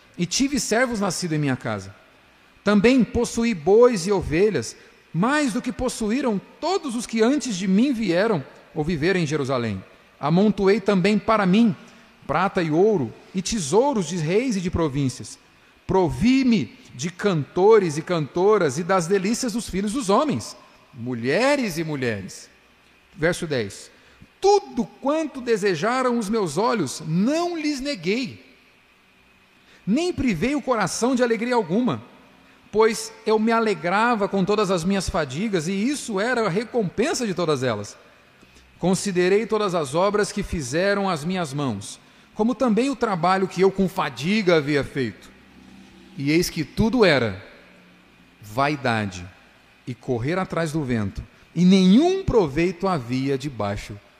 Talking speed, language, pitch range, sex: 140 wpm, Portuguese, 145-225 Hz, male